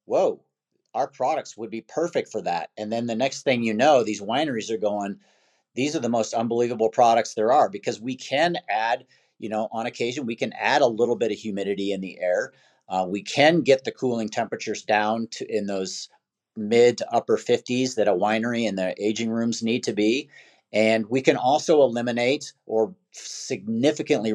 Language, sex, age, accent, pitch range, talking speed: English, male, 50-69, American, 105-120 Hz, 190 wpm